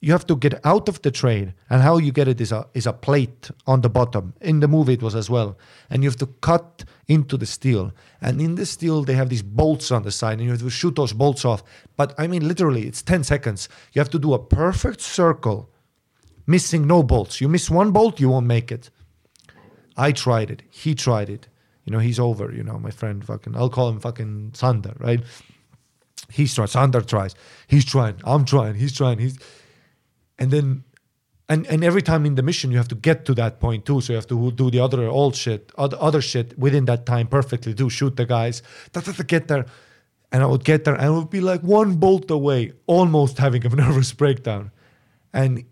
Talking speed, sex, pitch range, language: 220 wpm, male, 120-150 Hz, English